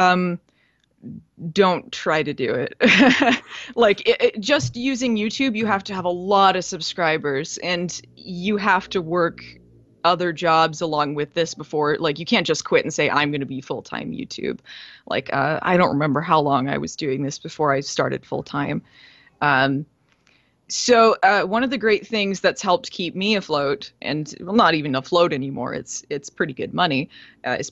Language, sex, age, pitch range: English, female, 20-39, 150-195 Hz